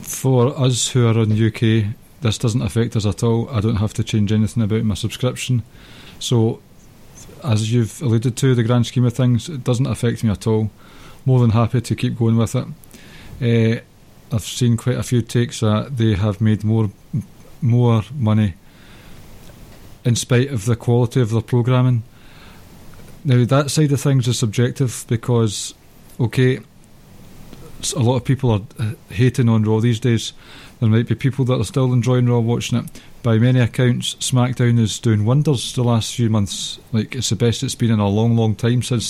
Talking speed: 185 wpm